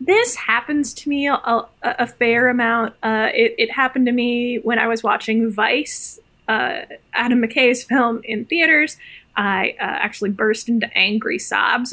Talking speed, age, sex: 165 wpm, 10-29, female